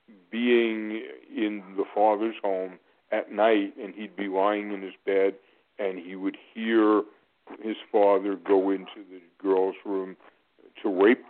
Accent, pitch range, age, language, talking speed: American, 95-110 Hz, 50-69, English, 145 wpm